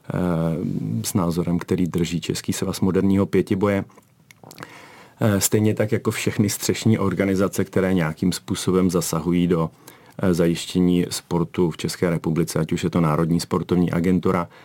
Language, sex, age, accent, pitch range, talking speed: Czech, male, 40-59, native, 85-95 Hz, 125 wpm